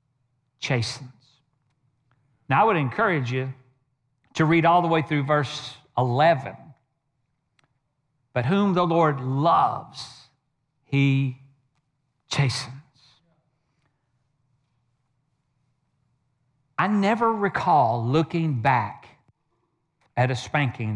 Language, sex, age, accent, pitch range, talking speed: English, male, 50-69, American, 130-170 Hz, 85 wpm